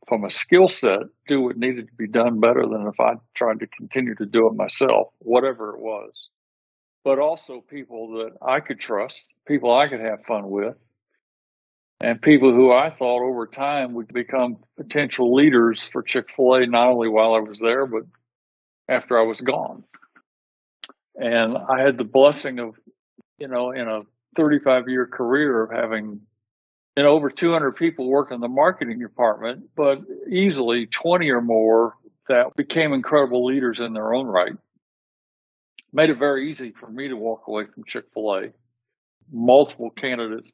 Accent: American